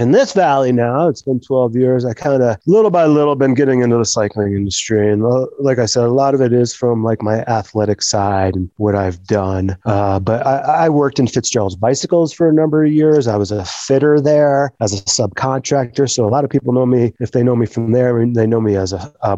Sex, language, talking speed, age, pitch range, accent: male, English, 240 wpm, 30-49, 105-130 Hz, American